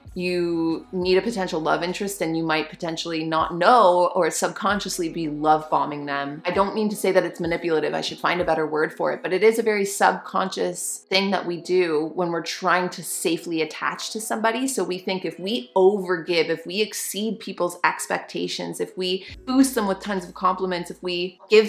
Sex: female